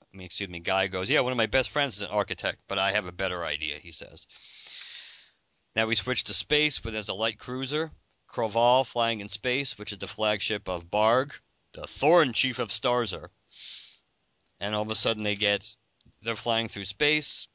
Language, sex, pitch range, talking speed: English, male, 95-115 Hz, 190 wpm